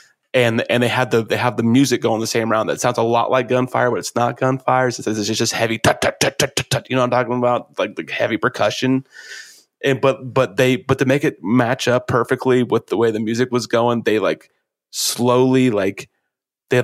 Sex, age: male, 30-49